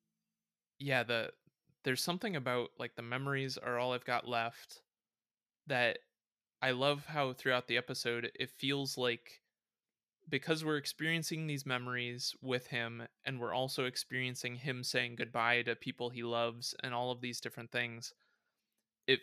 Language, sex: English, male